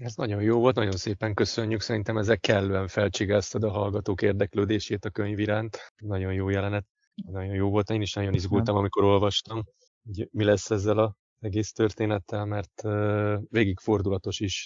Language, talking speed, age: Hungarian, 165 wpm, 30-49